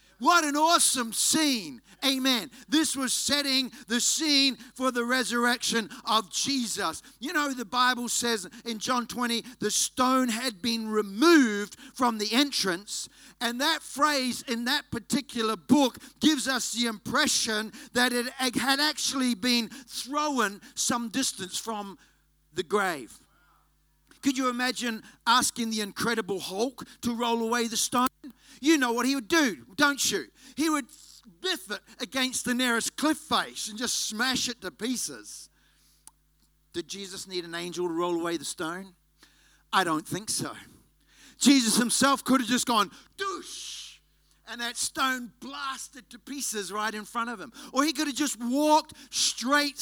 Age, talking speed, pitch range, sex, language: 50-69, 150 wpm, 225-275 Hz, male, English